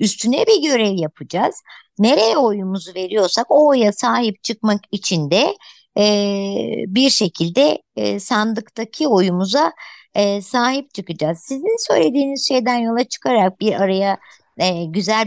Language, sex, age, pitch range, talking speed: Turkish, male, 60-79, 185-235 Hz, 120 wpm